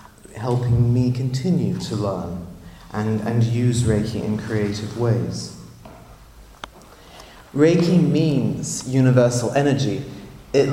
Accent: British